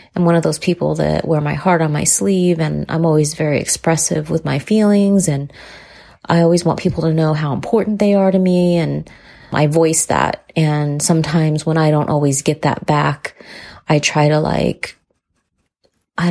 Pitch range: 155-185 Hz